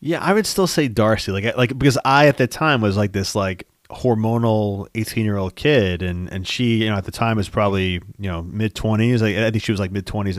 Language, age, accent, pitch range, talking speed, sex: English, 30-49, American, 95-125 Hz, 255 wpm, male